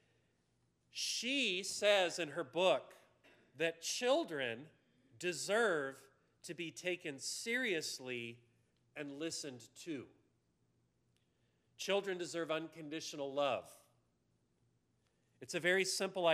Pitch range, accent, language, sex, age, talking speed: 145-190 Hz, American, English, male, 40-59, 85 wpm